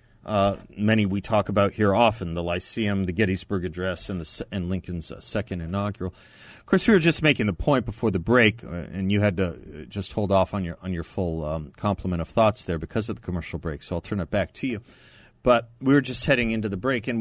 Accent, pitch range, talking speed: American, 95-115 Hz, 245 wpm